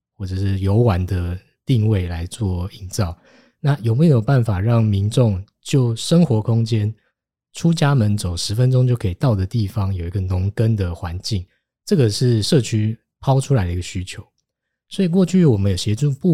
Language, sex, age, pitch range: Chinese, male, 20-39, 95-125 Hz